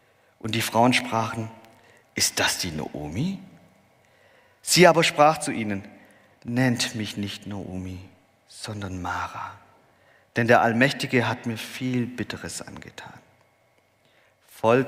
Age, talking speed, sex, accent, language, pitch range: 50-69, 115 wpm, male, German, German, 95-125 Hz